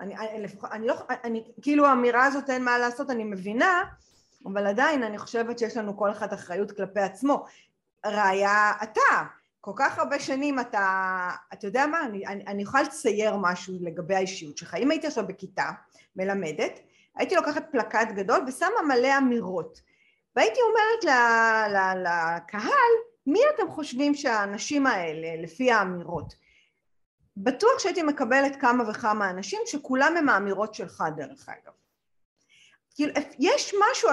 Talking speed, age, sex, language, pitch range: 145 wpm, 30-49, female, Hebrew, 200-290 Hz